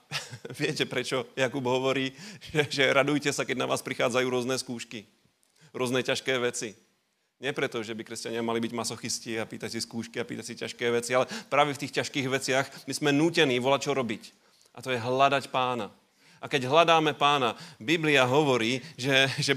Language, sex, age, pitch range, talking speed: Slovak, male, 30-49, 120-145 Hz, 180 wpm